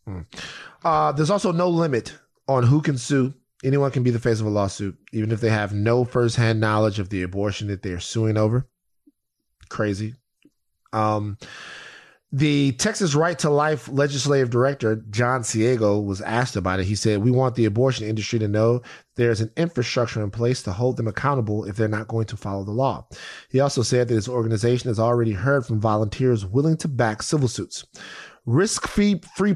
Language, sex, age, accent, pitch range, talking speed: English, male, 30-49, American, 105-140 Hz, 190 wpm